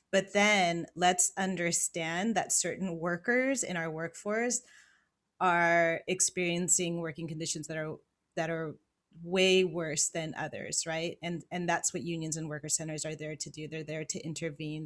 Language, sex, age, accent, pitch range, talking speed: English, female, 30-49, American, 160-185 Hz, 160 wpm